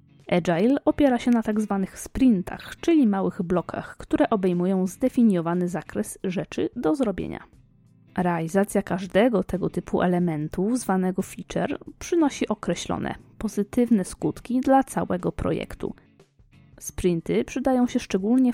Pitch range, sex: 180-245 Hz, female